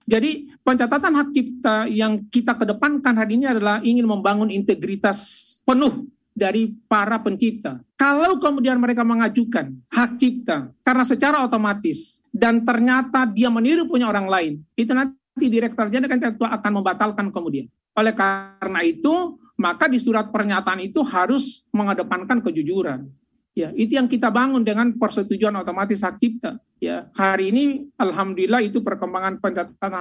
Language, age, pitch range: Indonesian, 50-69, 195-255 Hz